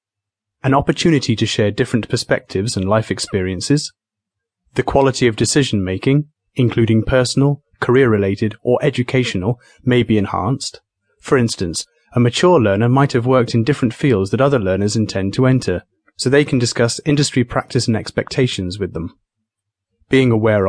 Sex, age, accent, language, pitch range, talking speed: male, 30-49, British, English, 105-135 Hz, 145 wpm